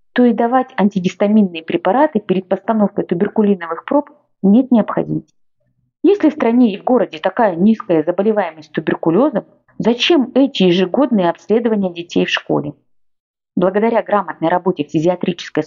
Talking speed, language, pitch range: 125 wpm, Russian, 180-235 Hz